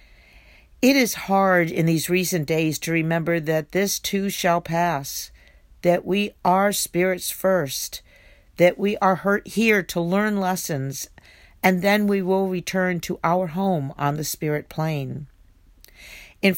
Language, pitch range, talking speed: English, 150-195 Hz, 145 wpm